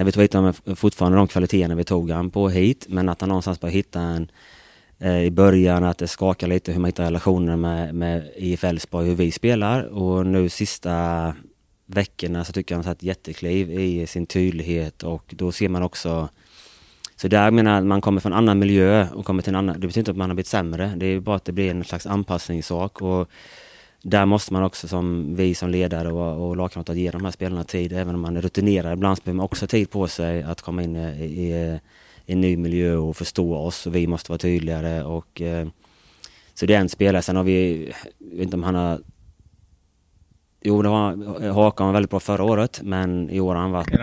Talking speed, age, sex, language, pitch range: 215 wpm, 20-39, male, Swedish, 85-95 Hz